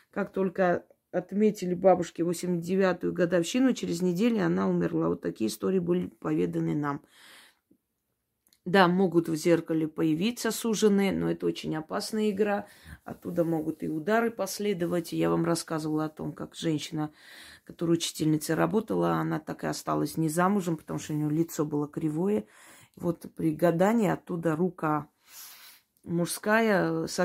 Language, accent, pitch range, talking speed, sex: Russian, native, 155-195 Hz, 135 wpm, female